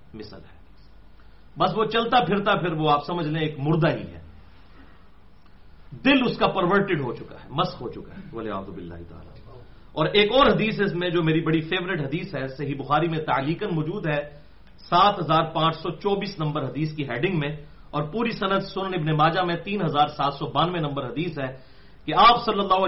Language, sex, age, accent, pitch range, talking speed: English, male, 40-59, Indian, 145-200 Hz, 165 wpm